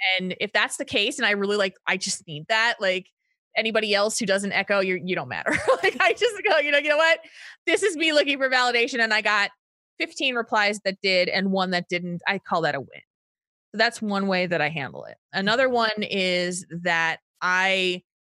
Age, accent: 20-39, American